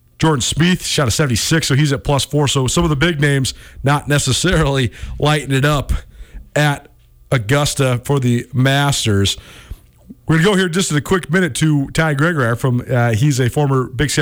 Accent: American